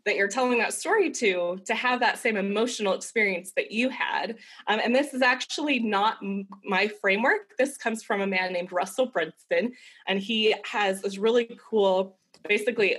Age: 20-39